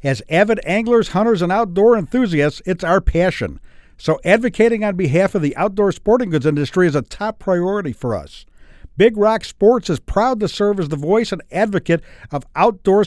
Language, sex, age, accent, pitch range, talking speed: English, male, 60-79, American, 160-220 Hz, 185 wpm